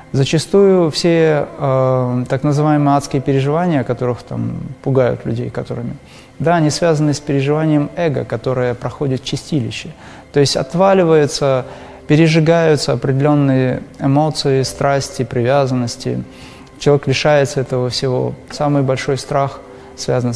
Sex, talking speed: male, 110 wpm